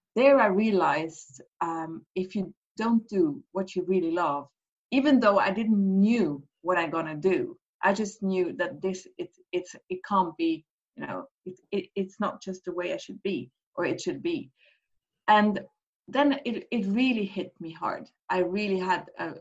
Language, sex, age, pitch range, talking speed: Polish, female, 30-49, 170-225 Hz, 185 wpm